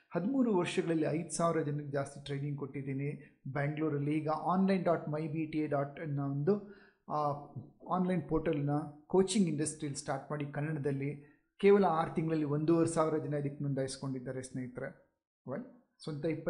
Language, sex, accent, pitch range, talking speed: Kannada, male, native, 145-195 Hz, 135 wpm